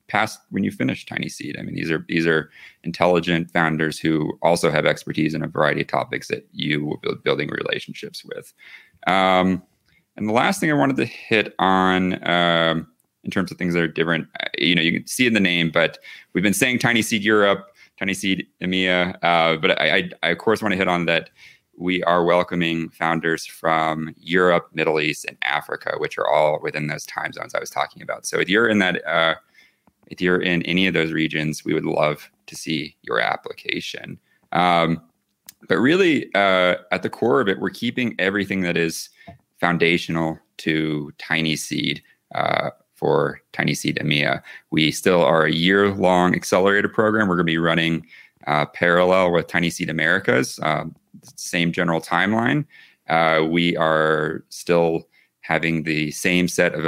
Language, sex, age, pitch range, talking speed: English, male, 30-49, 80-90 Hz, 180 wpm